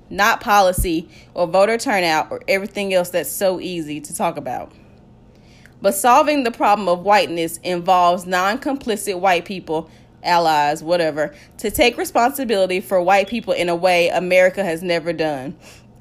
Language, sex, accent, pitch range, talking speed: English, female, American, 175-230 Hz, 145 wpm